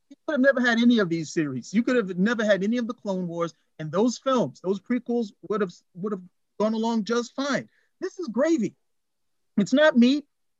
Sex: male